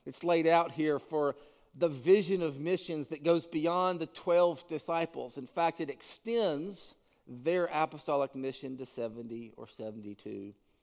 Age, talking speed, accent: 50-69, 145 wpm, American